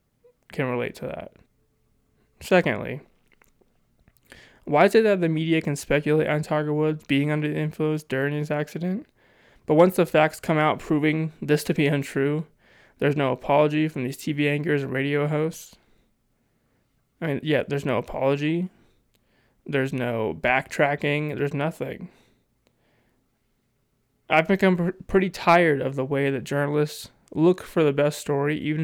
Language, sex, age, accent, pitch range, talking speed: English, male, 20-39, American, 135-160 Hz, 145 wpm